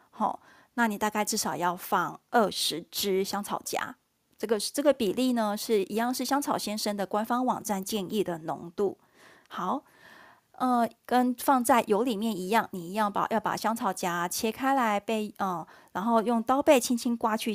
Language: Chinese